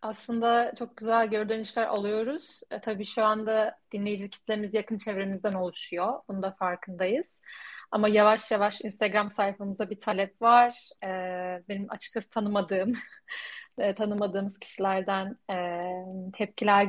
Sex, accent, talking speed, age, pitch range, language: female, native, 120 wpm, 30-49, 200-235 Hz, Turkish